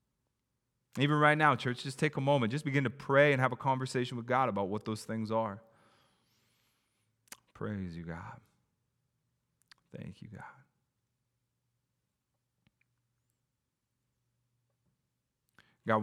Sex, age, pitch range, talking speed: male, 30-49, 100-125 Hz, 110 wpm